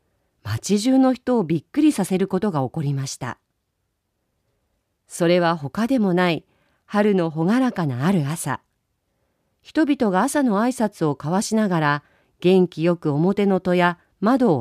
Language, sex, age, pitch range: Japanese, female, 40-59, 135-210 Hz